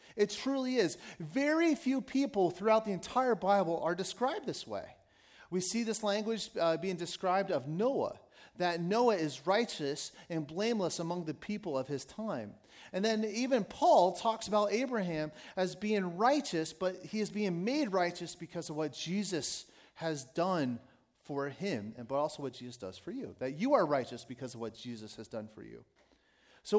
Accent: American